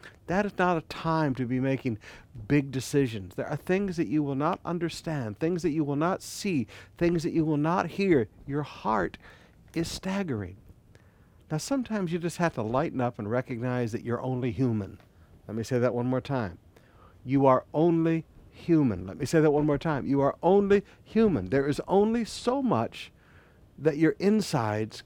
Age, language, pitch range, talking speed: 60-79, English, 110-165 Hz, 185 wpm